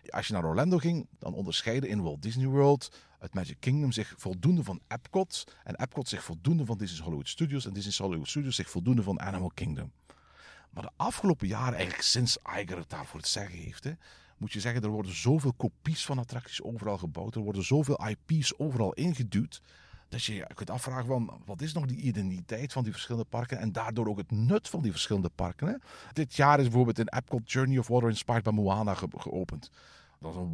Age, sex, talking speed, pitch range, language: 50-69, male, 210 wpm, 95-135 Hz, Dutch